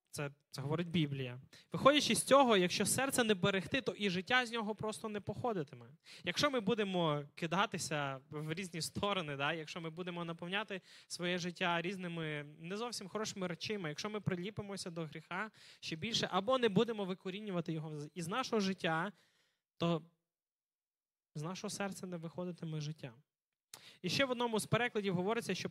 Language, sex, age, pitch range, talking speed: Ukrainian, male, 20-39, 150-200 Hz, 160 wpm